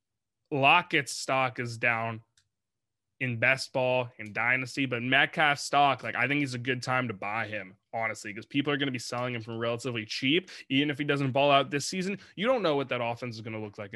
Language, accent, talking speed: English, American, 230 wpm